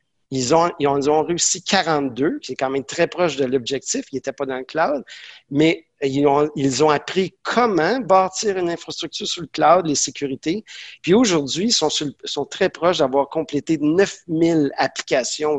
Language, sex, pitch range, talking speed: French, male, 140-175 Hz, 185 wpm